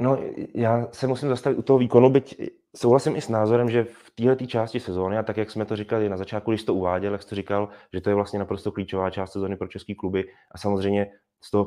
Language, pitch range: Czech, 100-115 Hz